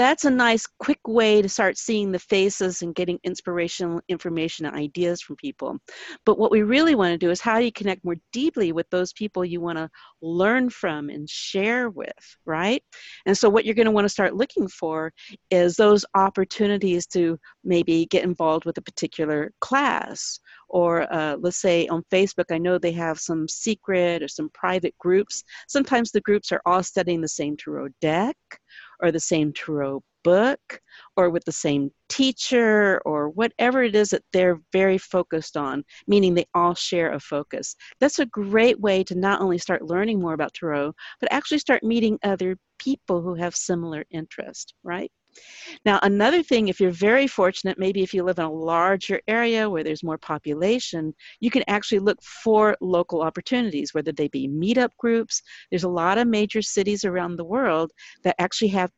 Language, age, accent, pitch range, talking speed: English, 50-69, American, 170-220 Hz, 185 wpm